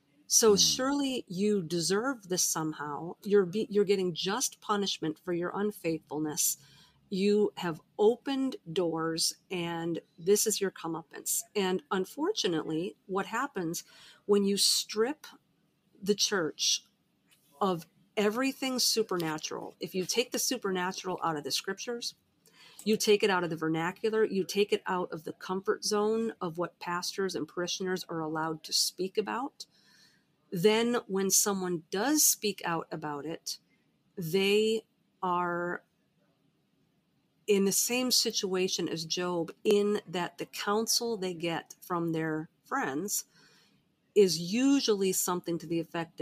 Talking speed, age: 130 wpm, 40-59